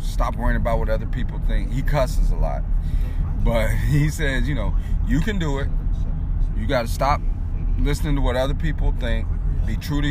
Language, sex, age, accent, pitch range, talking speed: English, male, 30-49, American, 80-100 Hz, 195 wpm